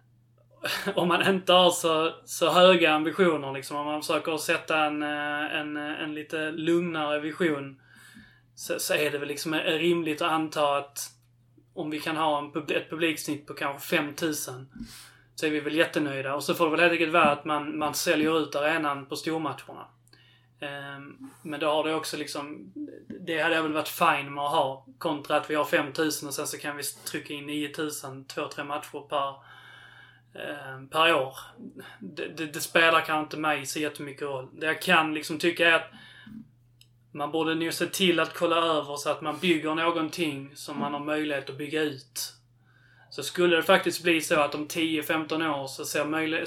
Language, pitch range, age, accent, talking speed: Swedish, 140-165 Hz, 20-39, native, 185 wpm